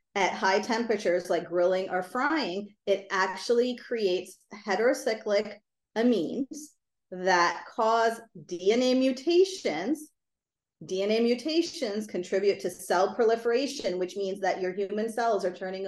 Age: 30-49